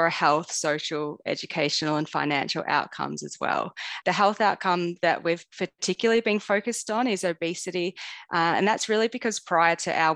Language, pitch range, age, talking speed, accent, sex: English, 155-180 Hz, 20-39, 165 wpm, Australian, female